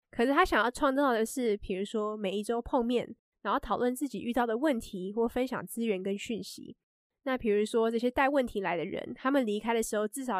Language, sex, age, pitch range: Chinese, female, 20-39, 215-270 Hz